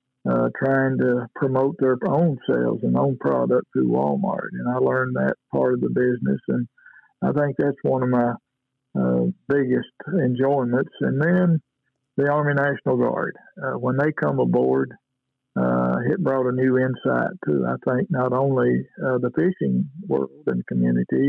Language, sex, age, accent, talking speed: English, male, 50-69, American, 165 wpm